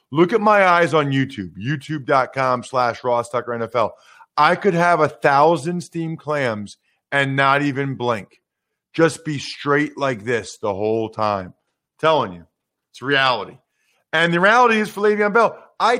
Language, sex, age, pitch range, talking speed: English, male, 40-59, 135-185 Hz, 160 wpm